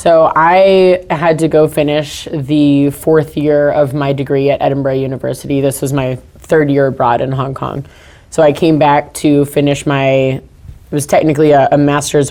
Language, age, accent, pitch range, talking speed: English, 20-39, American, 135-150 Hz, 180 wpm